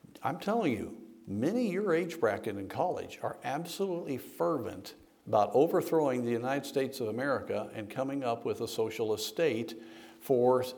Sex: male